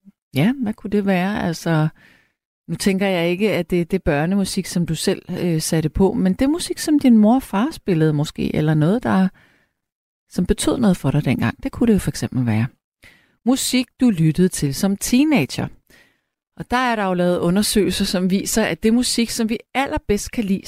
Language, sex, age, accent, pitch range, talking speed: Danish, female, 40-59, native, 150-215 Hz, 200 wpm